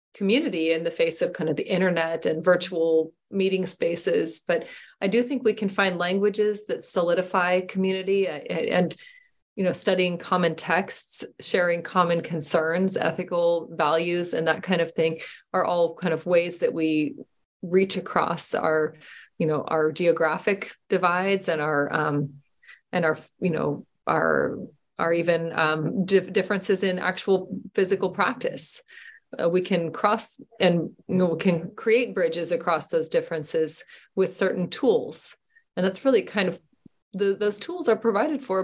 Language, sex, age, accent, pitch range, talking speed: English, female, 30-49, American, 165-200 Hz, 155 wpm